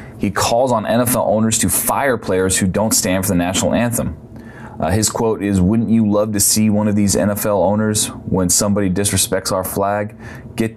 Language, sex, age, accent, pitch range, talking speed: English, male, 20-39, American, 95-110 Hz, 195 wpm